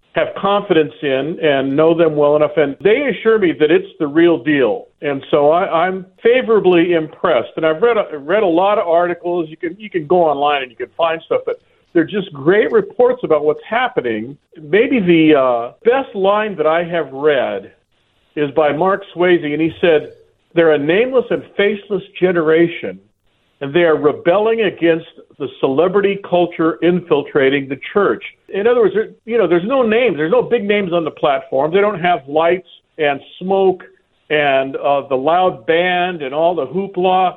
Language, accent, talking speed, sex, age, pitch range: English, American, 180 wpm, male, 50-69, 155-210 Hz